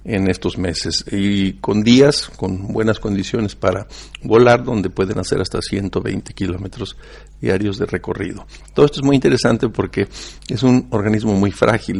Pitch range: 95-110 Hz